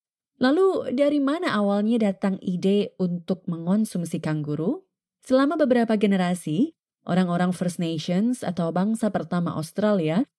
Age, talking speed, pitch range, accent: 20-39, 110 wpm, 170-210 Hz, native